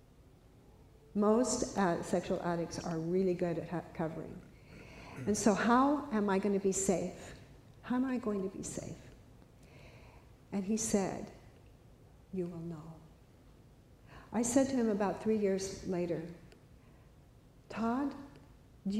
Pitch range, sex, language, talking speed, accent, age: 170-215 Hz, female, English, 130 wpm, American, 60-79